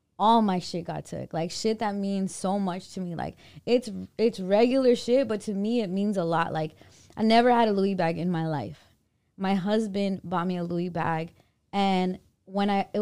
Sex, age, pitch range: female, 20-39, 195-240 Hz